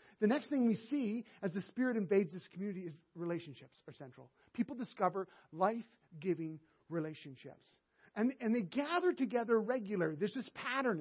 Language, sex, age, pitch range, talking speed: English, male, 40-59, 170-245 Hz, 155 wpm